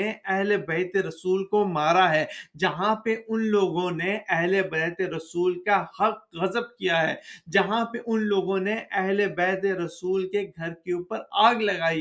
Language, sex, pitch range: Urdu, male, 180-210 Hz